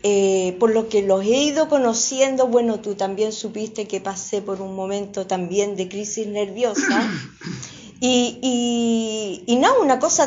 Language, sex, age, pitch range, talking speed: Spanish, female, 40-59, 220-300 Hz, 160 wpm